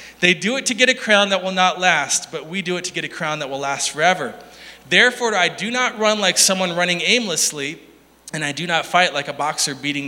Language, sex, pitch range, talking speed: English, male, 170-240 Hz, 245 wpm